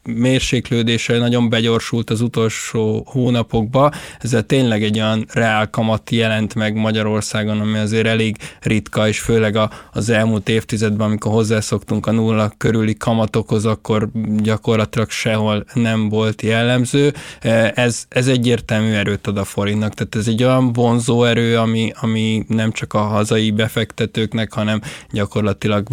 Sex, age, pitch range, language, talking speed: male, 20-39, 110-120 Hz, Hungarian, 135 wpm